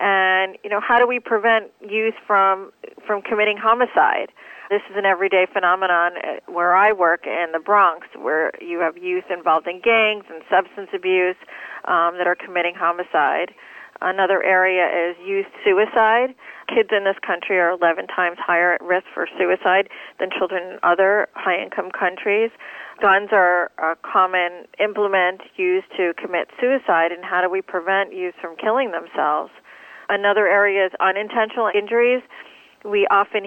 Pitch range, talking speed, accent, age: 180-210 Hz, 155 wpm, American, 40-59